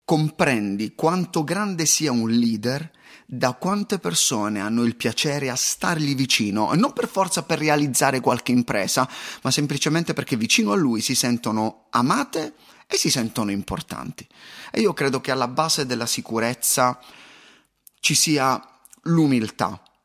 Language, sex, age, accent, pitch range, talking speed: Italian, male, 30-49, native, 120-175 Hz, 140 wpm